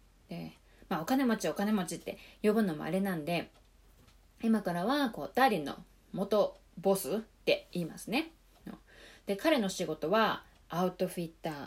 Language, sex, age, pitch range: Japanese, female, 20-39, 155-220 Hz